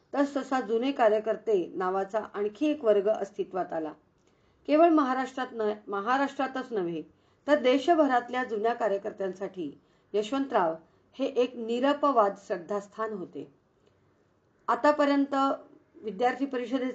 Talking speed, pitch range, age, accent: 50 wpm, 200-260 Hz, 40-59, native